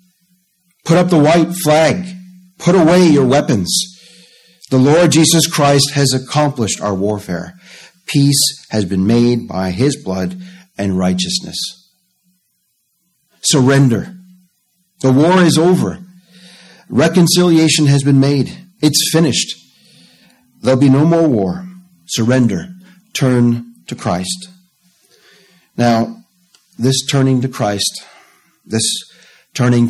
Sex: male